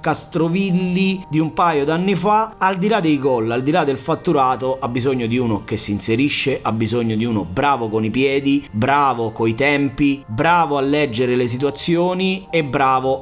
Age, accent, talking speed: 30-49, native, 185 wpm